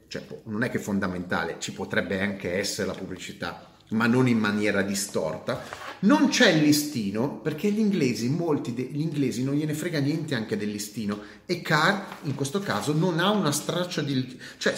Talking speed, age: 180 wpm, 30-49